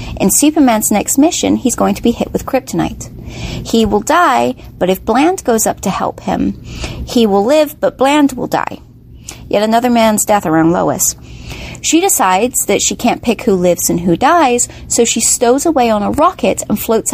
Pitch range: 210-270 Hz